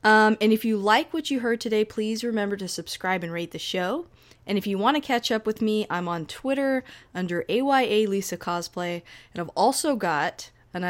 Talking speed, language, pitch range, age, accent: 210 wpm, English, 175-230 Hz, 20-39, American